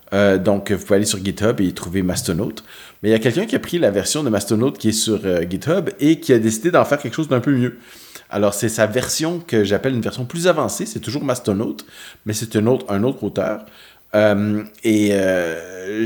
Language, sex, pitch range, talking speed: French, male, 100-120 Hz, 230 wpm